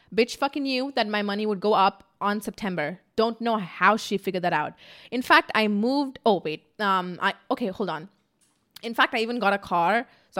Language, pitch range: English, 190-255 Hz